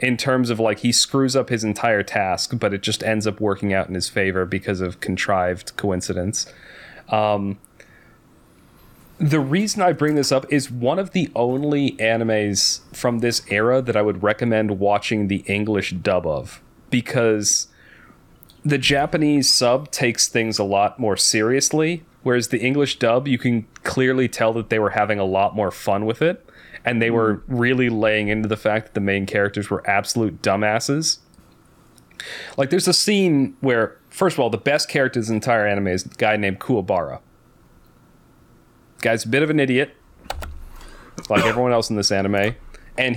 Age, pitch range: 30-49, 105-130 Hz